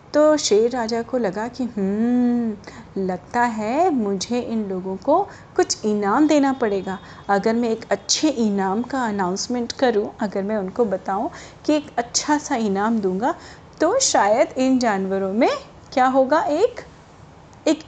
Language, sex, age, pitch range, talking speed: Hindi, female, 30-49, 215-295 Hz, 145 wpm